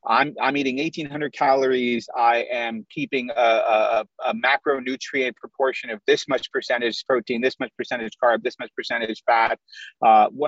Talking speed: 155 wpm